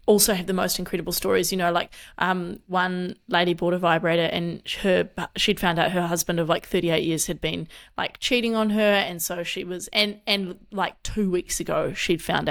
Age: 20-39